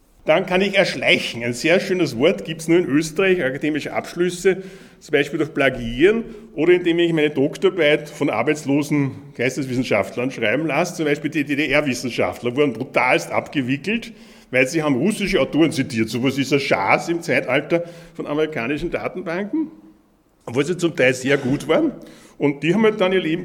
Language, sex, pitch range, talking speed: German, male, 140-180 Hz, 170 wpm